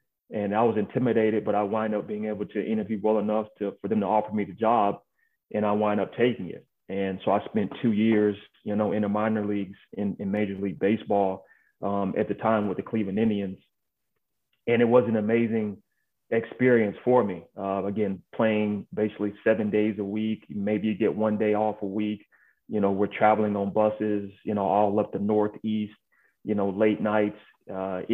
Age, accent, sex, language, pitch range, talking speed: 30-49, American, male, English, 100-110 Hz, 200 wpm